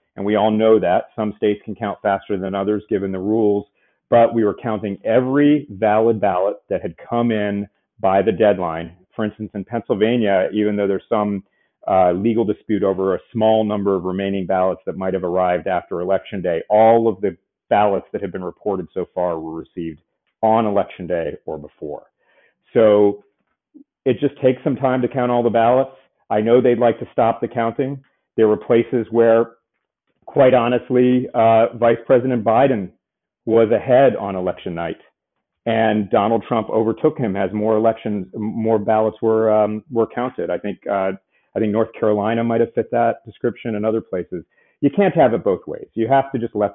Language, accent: English, American